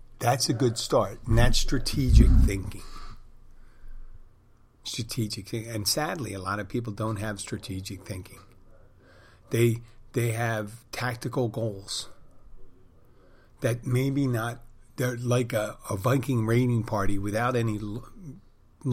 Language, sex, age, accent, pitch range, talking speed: English, male, 50-69, American, 105-120 Hz, 120 wpm